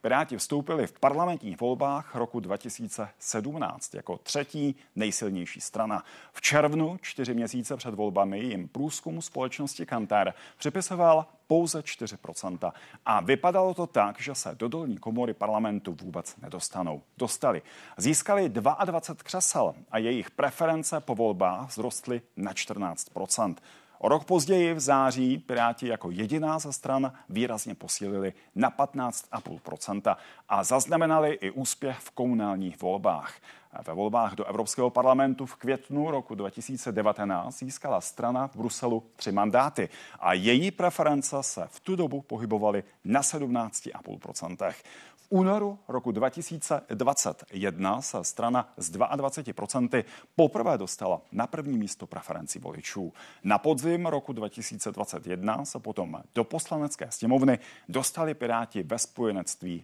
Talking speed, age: 120 wpm, 40-59